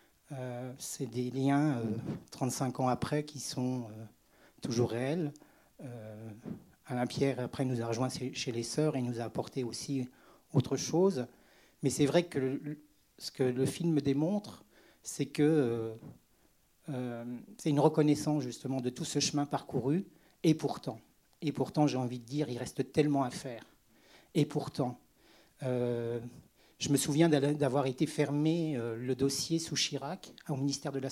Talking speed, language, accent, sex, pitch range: 160 wpm, French, French, male, 125-150 Hz